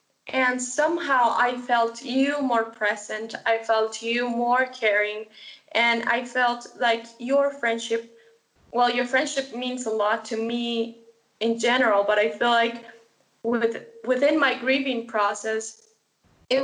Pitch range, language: 230-260 Hz, English